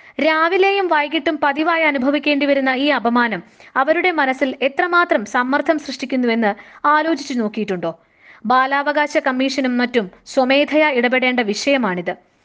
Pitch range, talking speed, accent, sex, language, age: 235-300 Hz, 95 wpm, native, female, Malayalam, 20-39